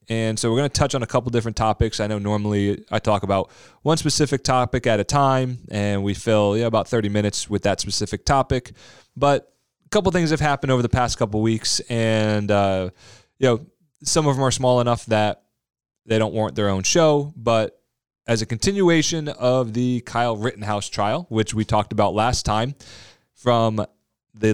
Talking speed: 190 wpm